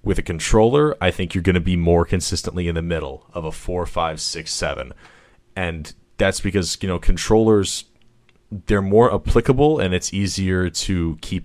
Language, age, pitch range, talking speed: English, 20-39, 85-100 Hz, 180 wpm